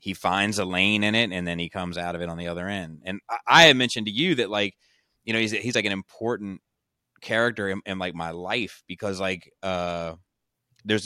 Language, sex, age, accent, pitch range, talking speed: English, male, 30-49, American, 85-100 Hz, 235 wpm